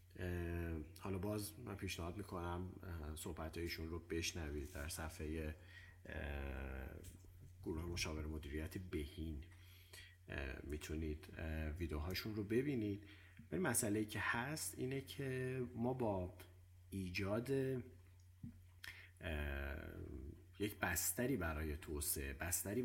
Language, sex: Persian, male